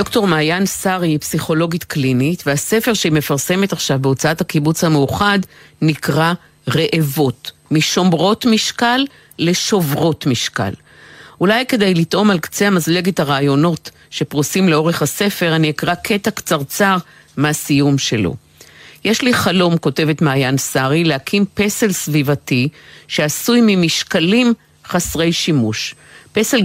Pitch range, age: 150-200 Hz, 50-69